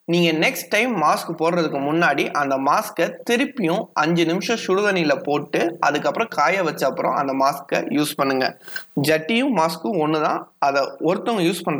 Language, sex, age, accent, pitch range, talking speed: Tamil, male, 20-39, native, 145-185 Hz, 100 wpm